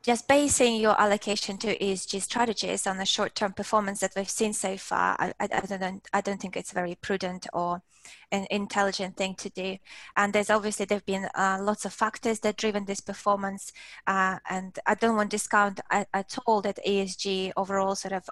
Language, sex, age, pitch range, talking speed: English, female, 20-39, 190-210 Hz, 185 wpm